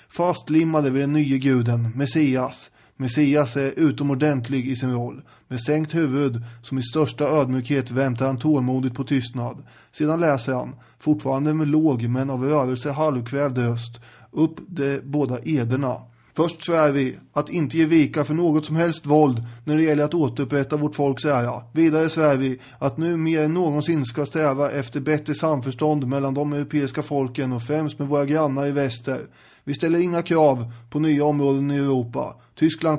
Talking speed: 170 wpm